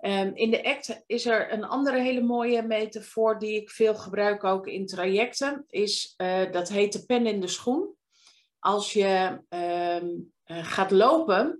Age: 40-59